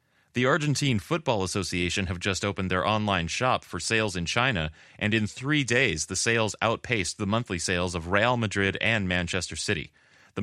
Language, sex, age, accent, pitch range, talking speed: English, male, 30-49, American, 90-120 Hz, 180 wpm